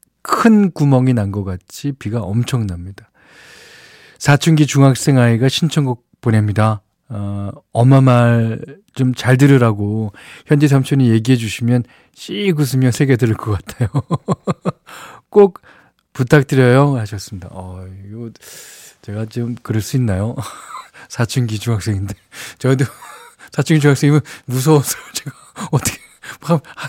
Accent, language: native, Korean